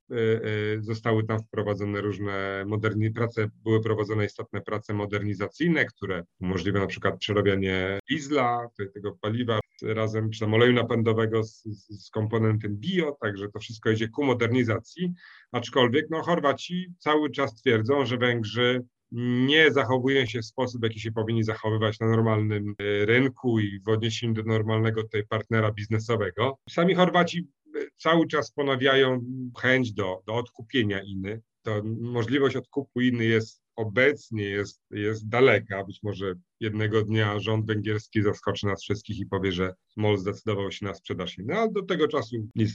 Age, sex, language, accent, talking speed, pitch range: 40-59, male, Polish, native, 145 wpm, 105-130 Hz